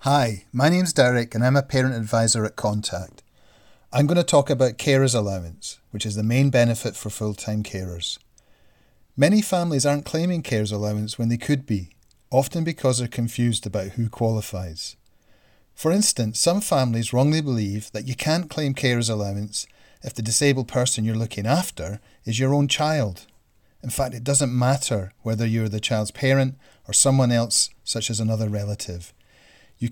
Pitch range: 105-135 Hz